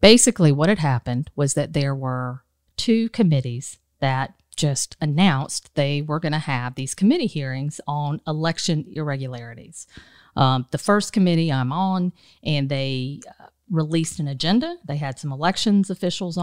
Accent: American